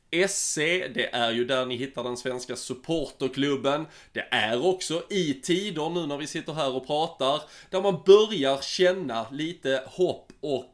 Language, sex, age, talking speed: Swedish, male, 20-39, 160 wpm